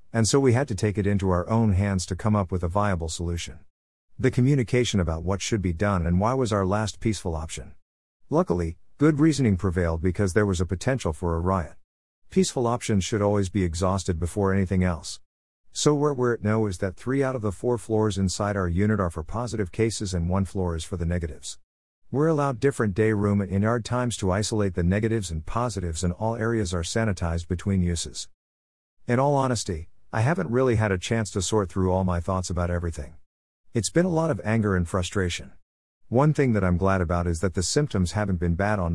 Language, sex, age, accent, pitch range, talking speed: English, male, 50-69, American, 85-110 Hz, 215 wpm